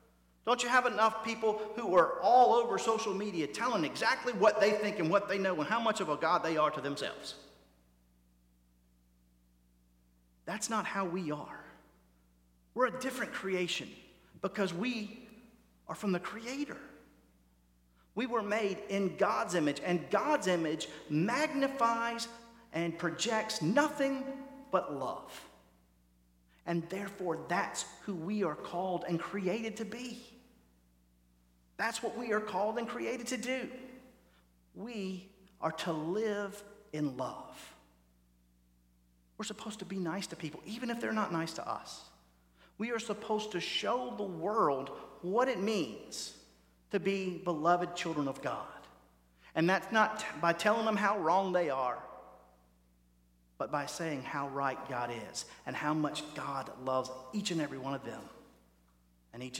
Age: 40-59